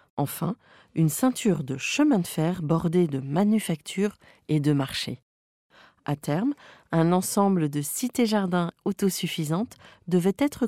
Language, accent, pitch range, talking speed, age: French, French, 160-220 Hz, 125 wpm, 40-59